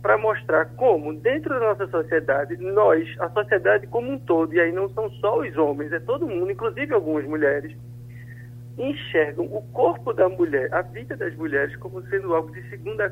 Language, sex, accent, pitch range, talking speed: Portuguese, male, Brazilian, 125-175 Hz, 185 wpm